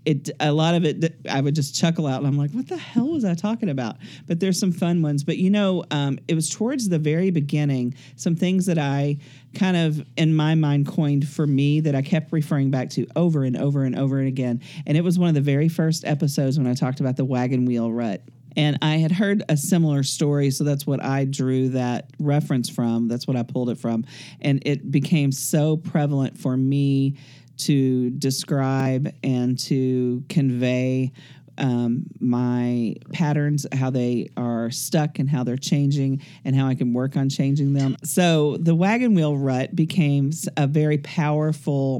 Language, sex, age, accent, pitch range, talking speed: English, male, 40-59, American, 130-155 Hz, 195 wpm